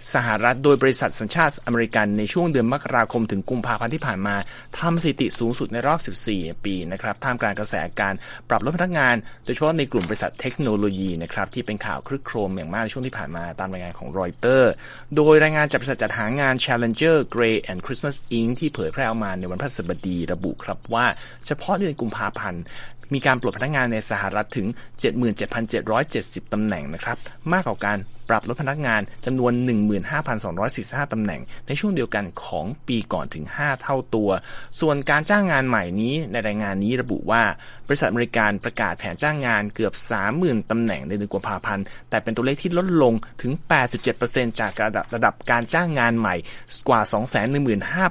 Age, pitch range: 30-49, 105-135 Hz